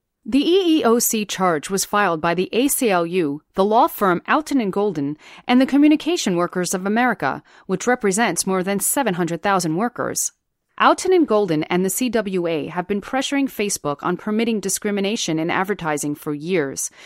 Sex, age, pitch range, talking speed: female, 30-49, 170-225 Hz, 145 wpm